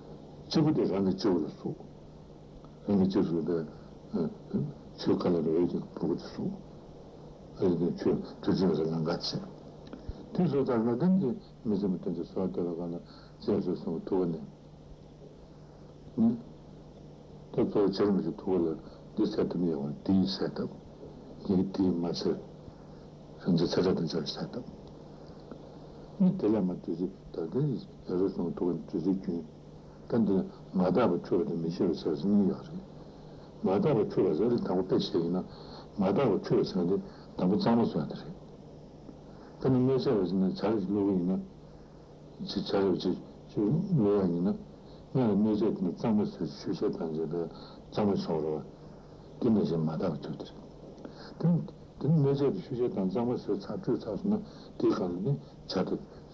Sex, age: male, 60-79